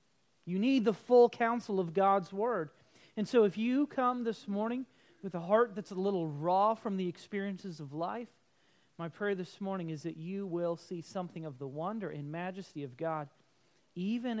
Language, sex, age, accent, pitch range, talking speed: English, male, 40-59, American, 165-215 Hz, 190 wpm